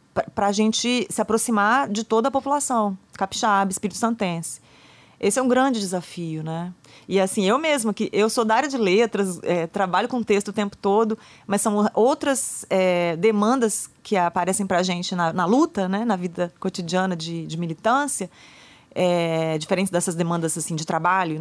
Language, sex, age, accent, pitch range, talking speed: Portuguese, female, 30-49, Brazilian, 180-225 Hz, 175 wpm